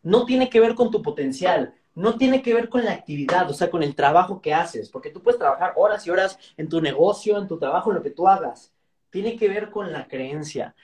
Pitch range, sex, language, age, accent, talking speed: 165-225 Hz, male, Spanish, 30-49, Mexican, 250 wpm